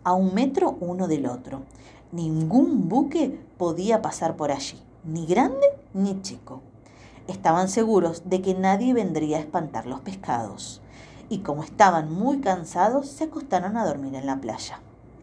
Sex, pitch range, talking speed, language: female, 155-225 Hz, 150 wpm, Spanish